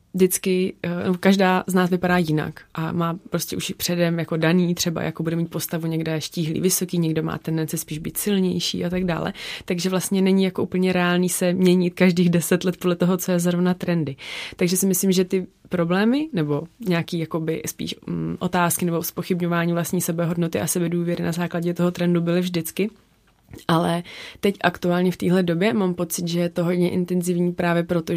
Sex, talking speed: female, 180 wpm